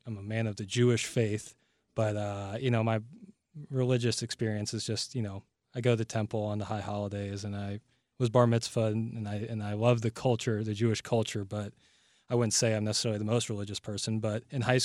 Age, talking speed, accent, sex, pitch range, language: 20-39, 220 wpm, American, male, 105-120 Hz, English